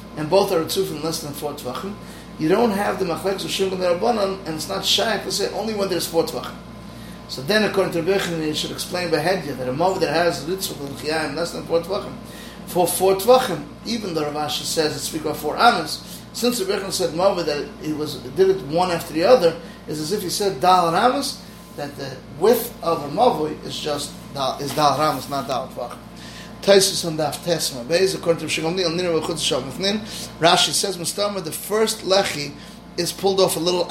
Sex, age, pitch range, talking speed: male, 30-49, 155-190 Hz, 200 wpm